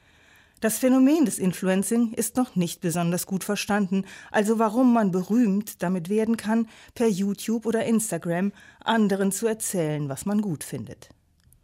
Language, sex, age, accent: German, female, 40-59, German